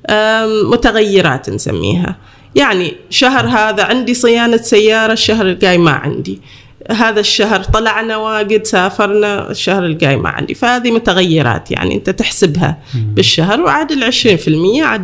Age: 20-39